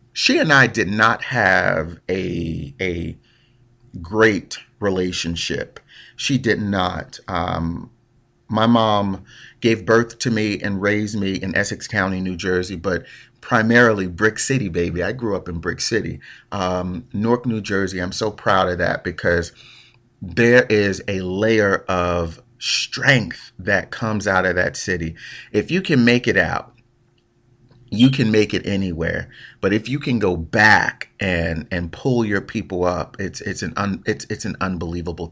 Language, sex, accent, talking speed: English, male, American, 155 wpm